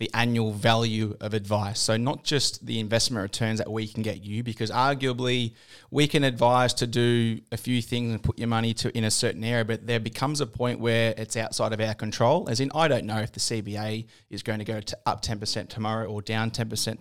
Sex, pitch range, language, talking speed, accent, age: male, 110-125 Hz, English, 235 wpm, Australian, 20-39